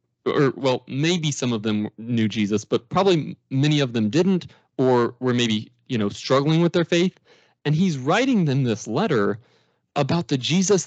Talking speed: 175 wpm